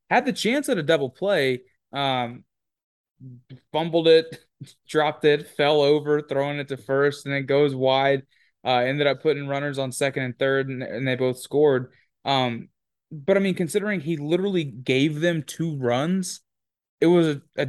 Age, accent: 20-39, American